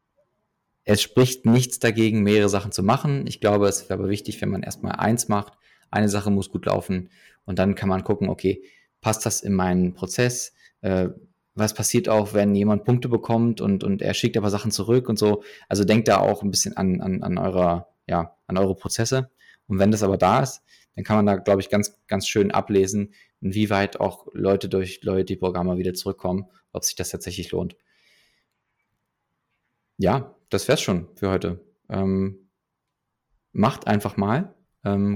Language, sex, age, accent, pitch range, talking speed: German, male, 20-39, German, 95-110 Hz, 180 wpm